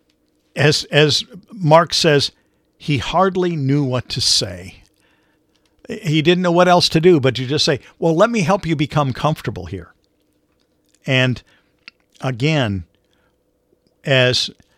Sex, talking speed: male, 130 wpm